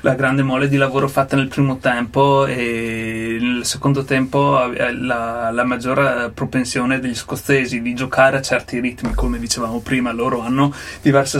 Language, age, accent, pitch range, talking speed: Italian, 30-49, native, 125-145 Hz, 165 wpm